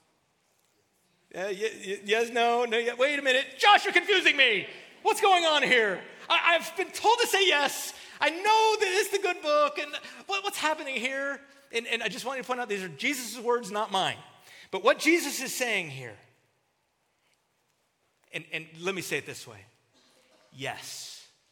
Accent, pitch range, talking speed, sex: American, 170-270 Hz, 175 wpm, male